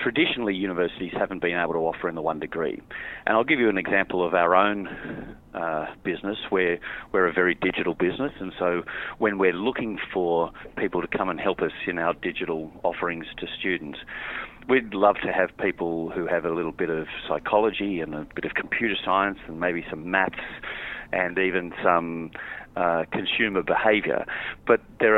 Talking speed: 180 wpm